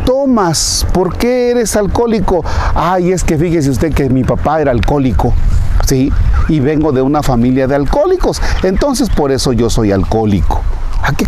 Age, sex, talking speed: 40-59, male, 165 wpm